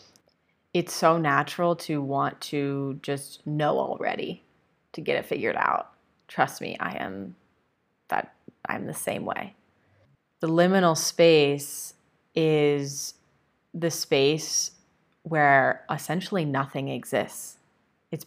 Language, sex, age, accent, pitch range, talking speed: English, female, 20-39, American, 140-165 Hz, 110 wpm